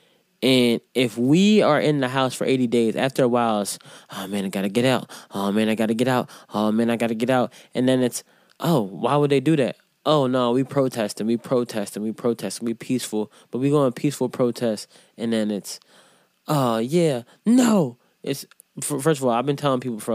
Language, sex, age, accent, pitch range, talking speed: English, male, 20-39, American, 115-135 Hz, 230 wpm